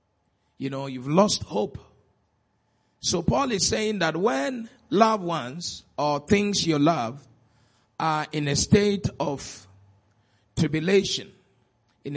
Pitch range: 120-200 Hz